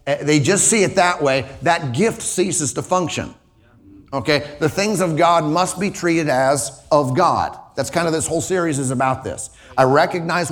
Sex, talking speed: male, 190 wpm